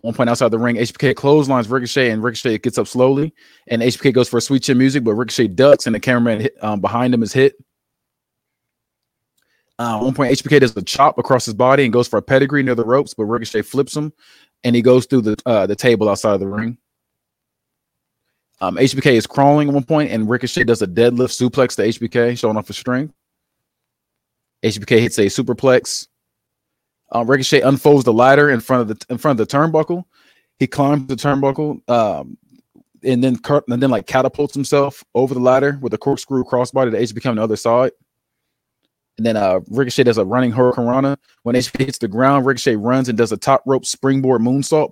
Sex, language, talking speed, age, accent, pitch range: male, English, 205 wpm, 20-39, American, 120-135 Hz